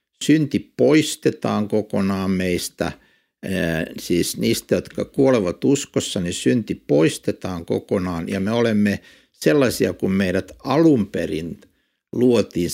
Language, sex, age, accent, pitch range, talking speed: Finnish, male, 60-79, native, 100-155 Hz, 100 wpm